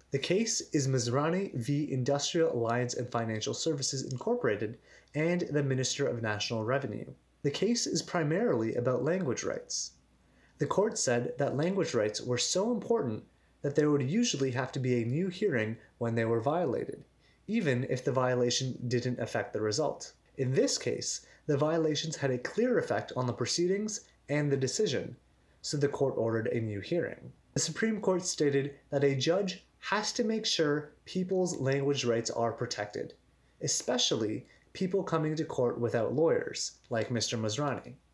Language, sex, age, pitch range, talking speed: English, male, 30-49, 120-175 Hz, 160 wpm